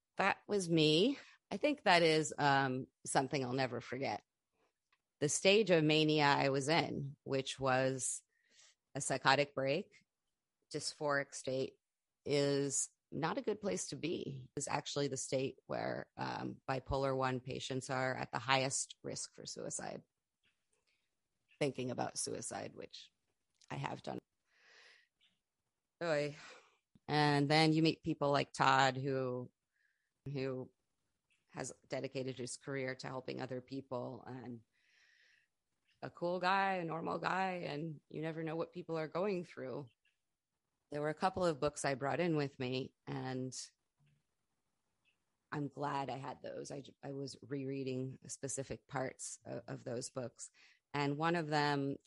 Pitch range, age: 130-155 Hz, 30-49